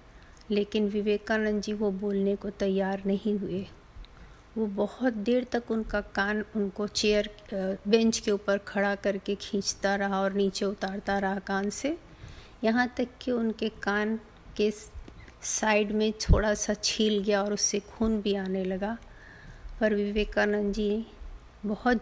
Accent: native